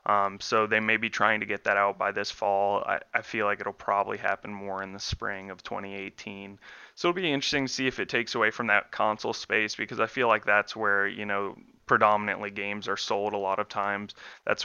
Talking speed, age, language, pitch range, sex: 230 wpm, 20-39, English, 100-110 Hz, male